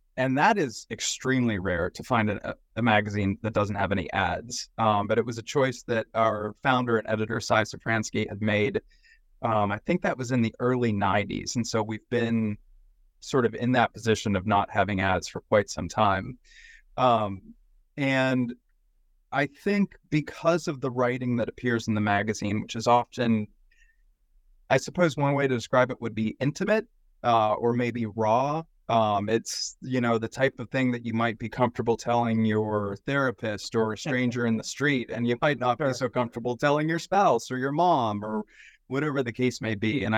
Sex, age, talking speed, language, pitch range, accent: male, 30-49, 190 wpm, English, 110-135 Hz, American